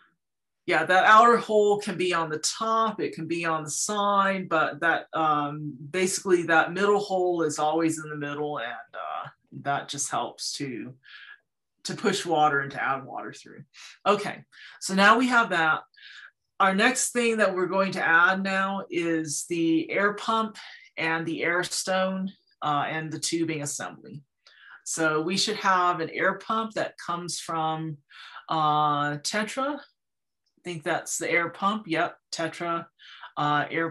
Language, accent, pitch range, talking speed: English, American, 160-195 Hz, 160 wpm